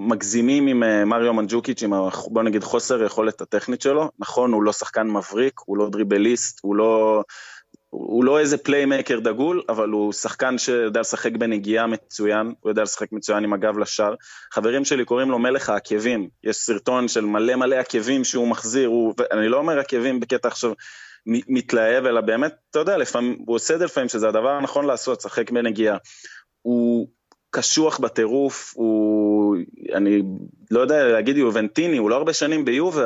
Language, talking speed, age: Hebrew, 165 wpm, 20-39